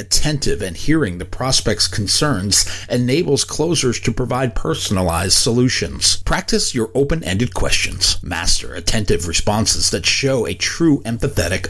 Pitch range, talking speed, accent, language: 95-130 Hz, 130 wpm, American, English